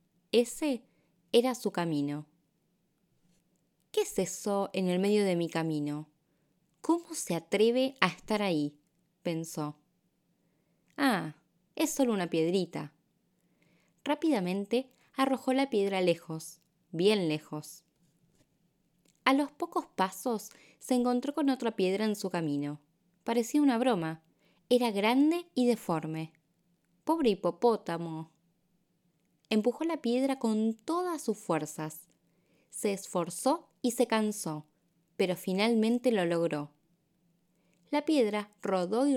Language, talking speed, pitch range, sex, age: Spanish, 110 wpm, 170-240 Hz, female, 20-39